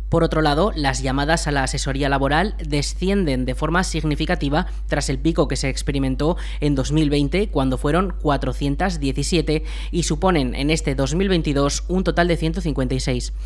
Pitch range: 140-175 Hz